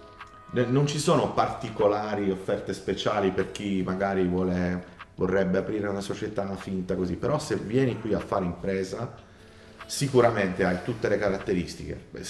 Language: Italian